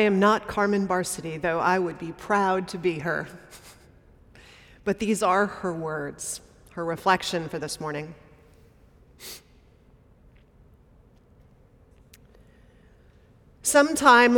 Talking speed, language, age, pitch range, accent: 100 wpm, English, 30-49, 185-220 Hz, American